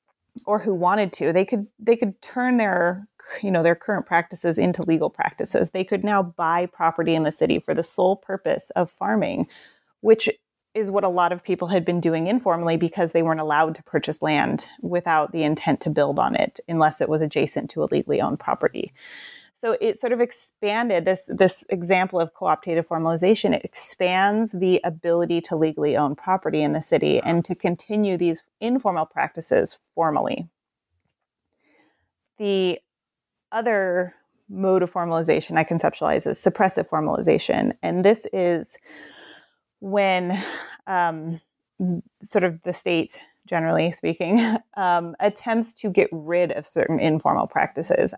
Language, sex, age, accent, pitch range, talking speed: English, female, 30-49, American, 165-205 Hz, 155 wpm